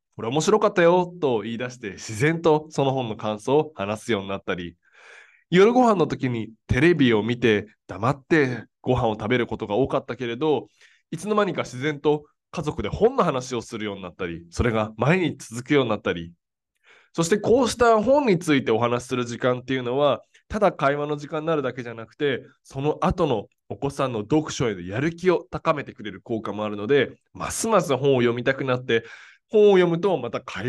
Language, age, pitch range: Japanese, 20-39, 110-155 Hz